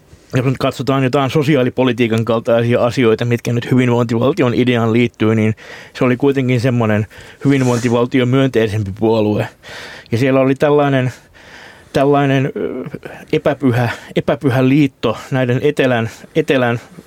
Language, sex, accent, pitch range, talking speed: Finnish, male, native, 115-135 Hz, 110 wpm